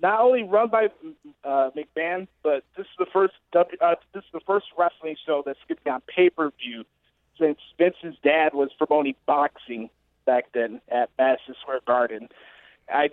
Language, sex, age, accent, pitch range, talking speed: English, male, 30-49, American, 145-185 Hz, 180 wpm